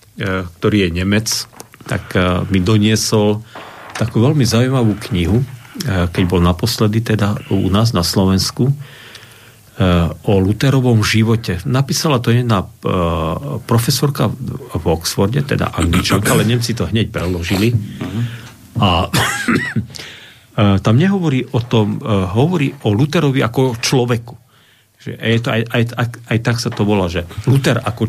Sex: male